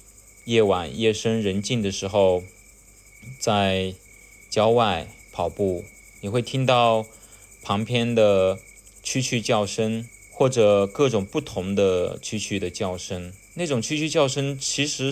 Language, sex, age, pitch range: Chinese, male, 20-39, 100-115 Hz